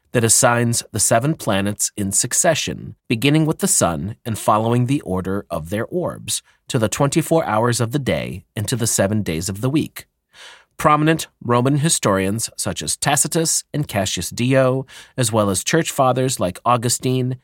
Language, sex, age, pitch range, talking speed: English, male, 30-49, 105-150 Hz, 170 wpm